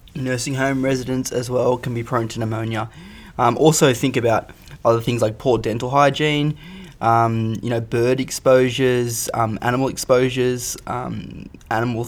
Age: 20-39